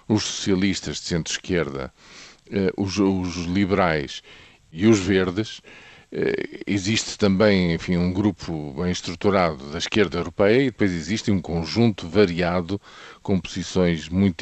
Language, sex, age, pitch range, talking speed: Portuguese, male, 50-69, 85-110 Hz, 120 wpm